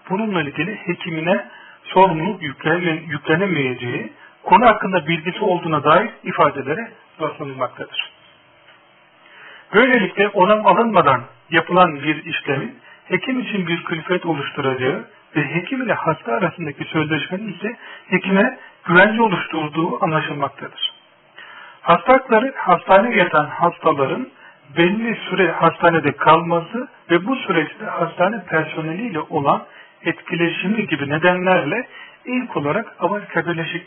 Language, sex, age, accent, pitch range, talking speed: Turkish, male, 40-59, native, 155-190 Hz, 95 wpm